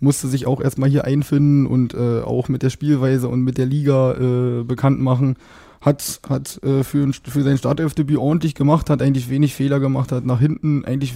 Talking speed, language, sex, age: 205 wpm, German, male, 20-39